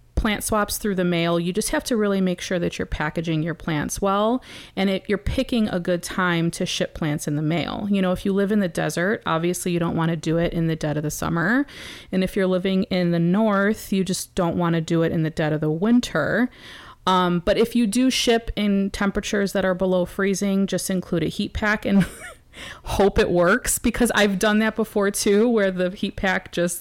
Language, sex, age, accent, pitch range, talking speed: English, female, 30-49, American, 170-215 Hz, 235 wpm